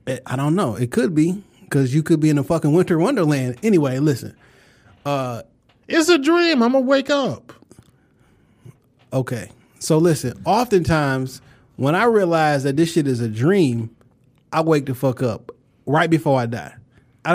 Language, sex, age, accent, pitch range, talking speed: English, male, 20-39, American, 120-160 Hz, 170 wpm